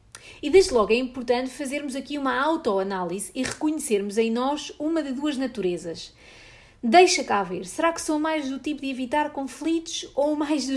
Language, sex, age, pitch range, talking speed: English, female, 30-49, 215-285 Hz, 180 wpm